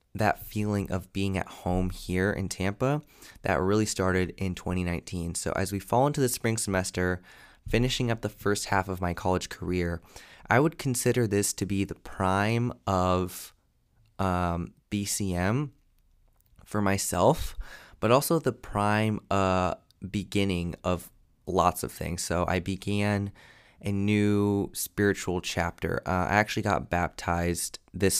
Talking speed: 145 wpm